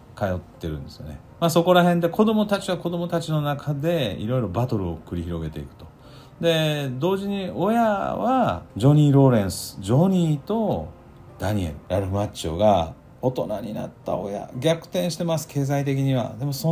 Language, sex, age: Japanese, male, 40-59